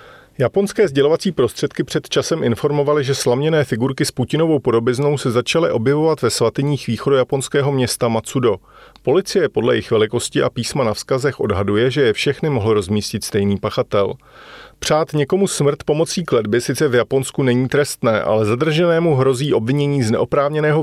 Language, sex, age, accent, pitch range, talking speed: Czech, male, 40-59, native, 115-145 Hz, 155 wpm